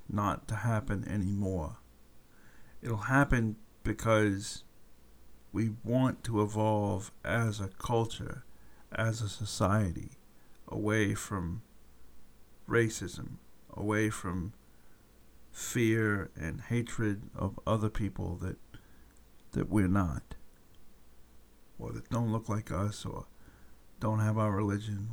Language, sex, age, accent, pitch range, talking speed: English, male, 50-69, American, 100-125 Hz, 105 wpm